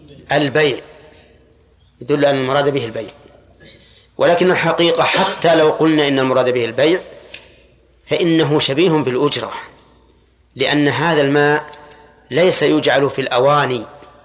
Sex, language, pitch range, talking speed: male, Arabic, 130-165 Hz, 105 wpm